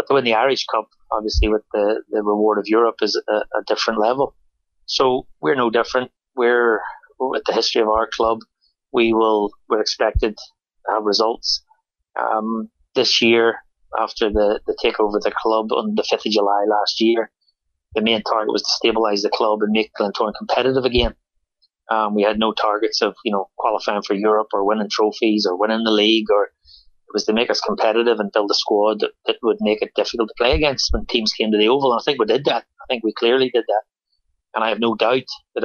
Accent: Irish